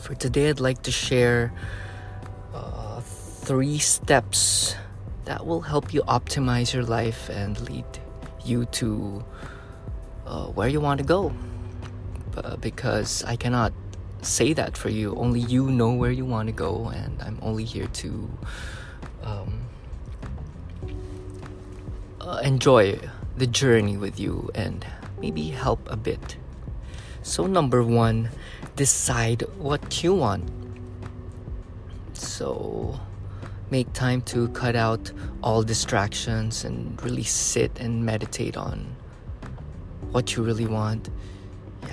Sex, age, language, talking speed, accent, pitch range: male, 20-39, English, 120 wpm, Filipino, 95-120 Hz